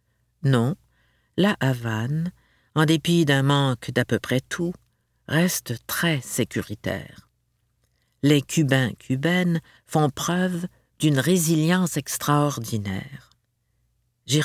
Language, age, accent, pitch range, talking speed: French, 50-69, French, 120-155 Hz, 90 wpm